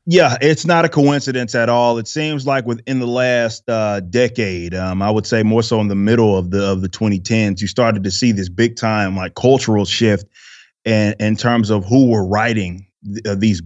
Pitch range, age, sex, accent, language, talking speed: 110-135 Hz, 20-39, male, American, English, 220 wpm